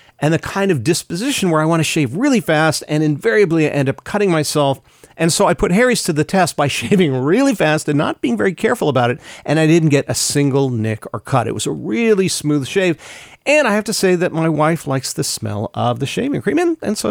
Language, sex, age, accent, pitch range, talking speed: English, male, 40-59, American, 135-195 Hz, 250 wpm